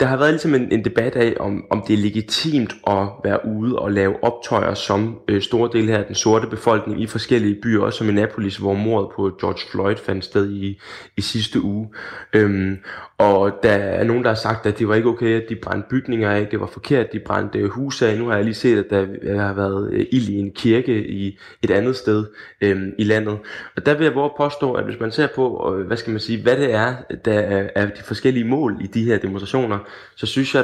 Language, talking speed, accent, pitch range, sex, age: Danish, 220 wpm, native, 100-125 Hz, male, 20-39